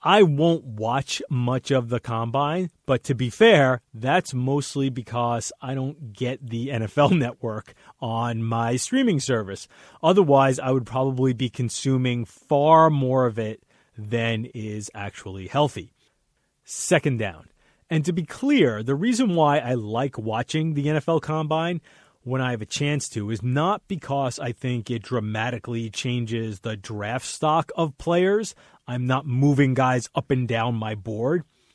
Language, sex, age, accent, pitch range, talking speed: English, male, 30-49, American, 115-150 Hz, 155 wpm